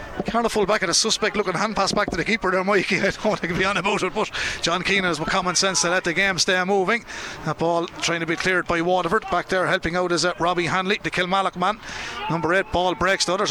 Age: 30-49